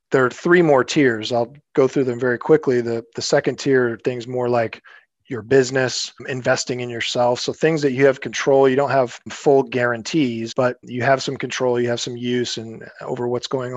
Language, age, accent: English, 40-59, American